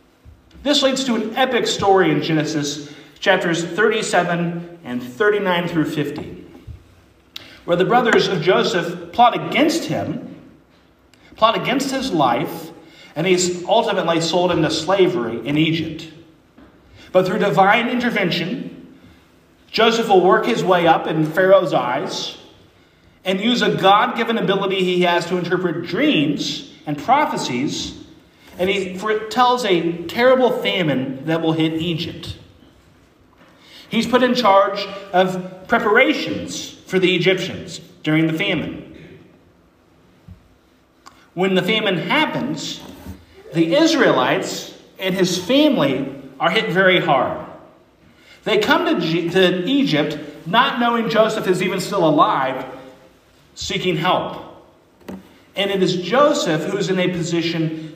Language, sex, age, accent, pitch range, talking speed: English, male, 40-59, American, 165-215 Hz, 120 wpm